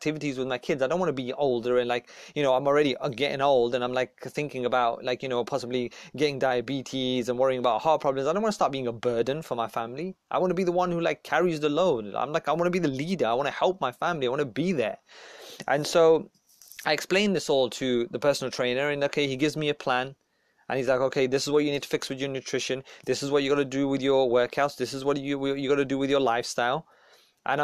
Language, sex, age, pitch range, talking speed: English, male, 20-39, 130-155 Hz, 280 wpm